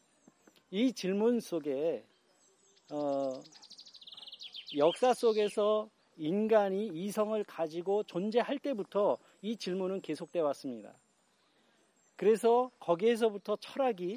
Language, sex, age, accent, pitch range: Korean, male, 40-59, native, 165-230 Hz